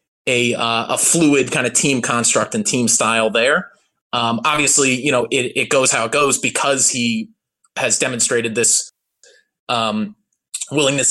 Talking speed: 155 wpm